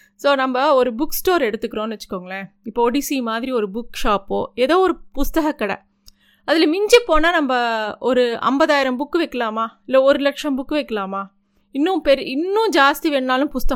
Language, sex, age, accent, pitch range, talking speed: Tamil, female, 30-49, native, 230-305 Hz, 155 wpm